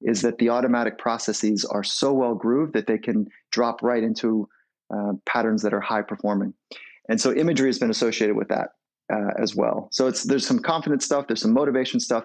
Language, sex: English, male